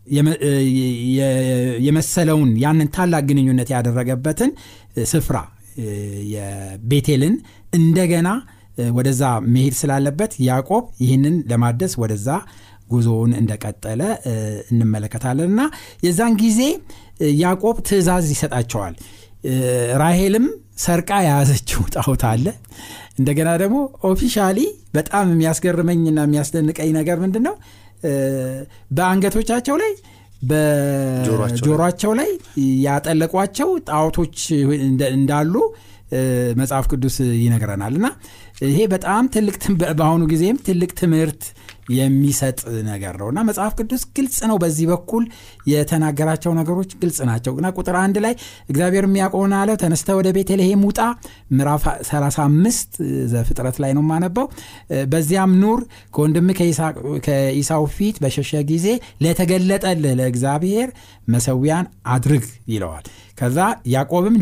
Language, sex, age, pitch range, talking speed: Amharic, male, 60-79, 125-180 Hz, 90 wpm